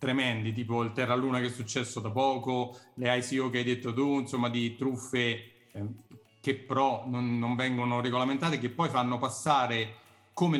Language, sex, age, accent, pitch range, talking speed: Italian, male, 30-49, native, 115-135 Hz, 170 wpm